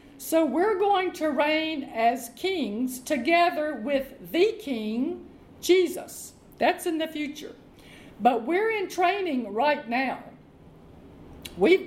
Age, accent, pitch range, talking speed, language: 50-69, American, 250-340 Hz, 115 wpm, English